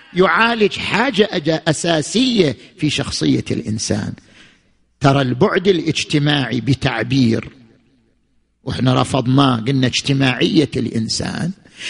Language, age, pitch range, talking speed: Arabic, 50-69, 130-200 Hz, 75 wpm